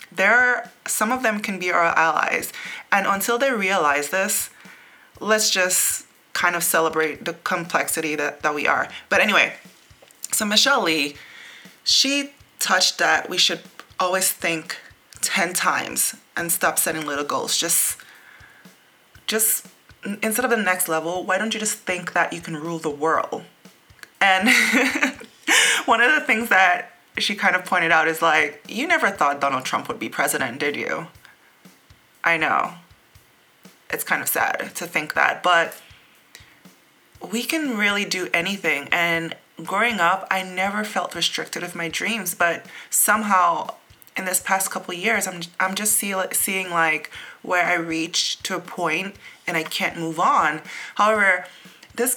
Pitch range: 170-215 Hz